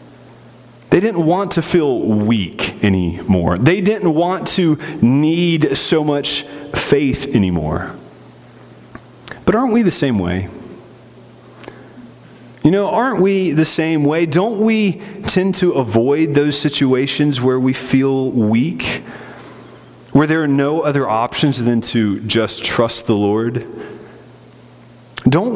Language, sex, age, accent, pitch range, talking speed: English, male, 30-49, American, 130-195 Hz, 125 wpm